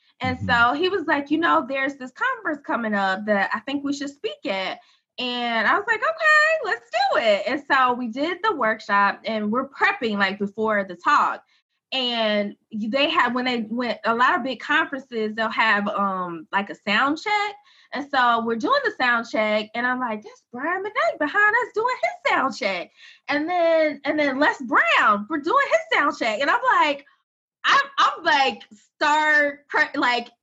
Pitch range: 215-295 Hz